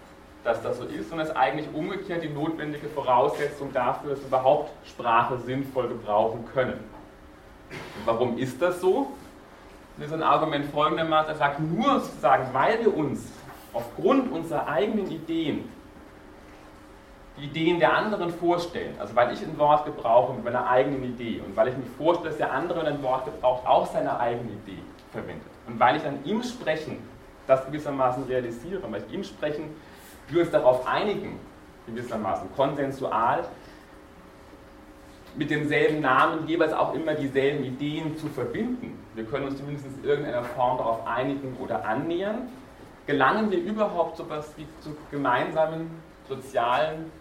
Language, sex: German, male